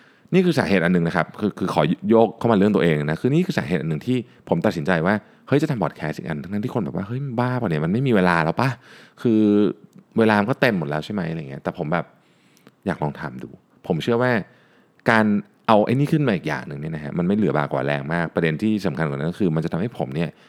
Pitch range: 80-120 Hz